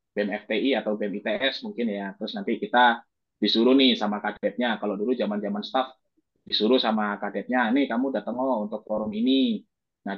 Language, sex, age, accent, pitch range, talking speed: Indonesian, male, 20-39, native, 110-140 Hz, 170 wpm